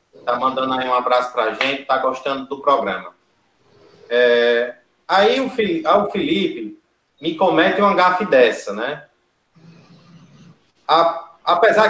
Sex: male